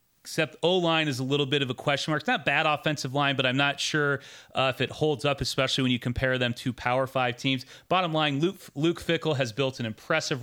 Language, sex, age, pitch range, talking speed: English, male, 30-49, 125-150 Hz, 245 wpm